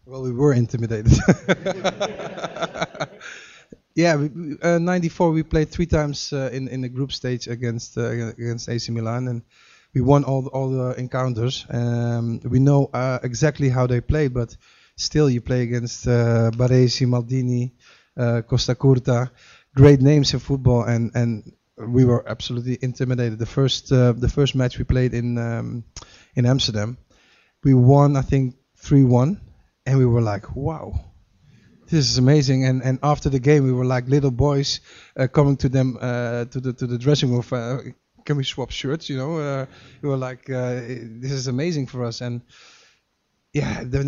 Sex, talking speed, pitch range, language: male, 175 wpm, 120-135 Hz, English